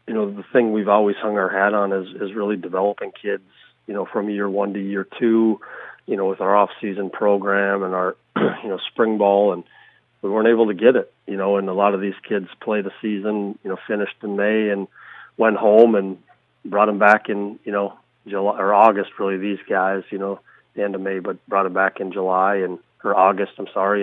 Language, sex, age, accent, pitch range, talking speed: German, male, 40-59, American, 100-105 Hz, 225 wpm